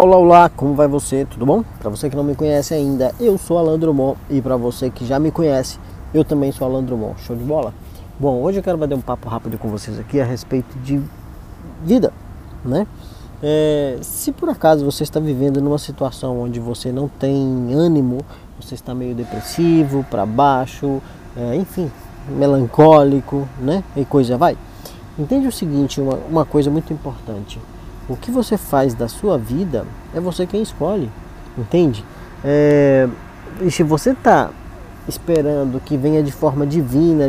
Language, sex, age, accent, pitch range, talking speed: Portuguese, male, 20-39, Brazilian, 125-160 Hz, 170 wpm